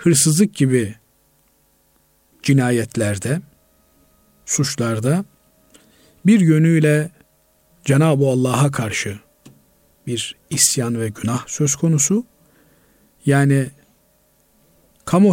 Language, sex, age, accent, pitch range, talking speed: Turkish, male, 50-69, native, 120-160 Hz, 65 wpm